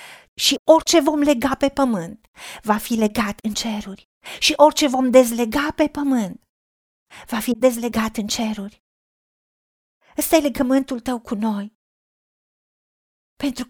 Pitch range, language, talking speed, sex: 240-290 Hz, Romanian, 125 wpm, female